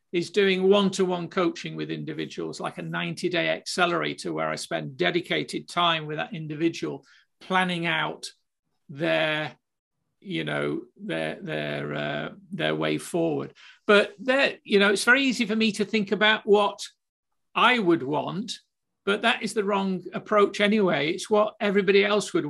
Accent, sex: British, male